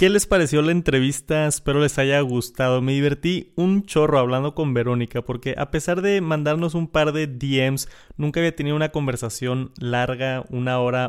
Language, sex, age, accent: Spanish, male, 20-39, Mexican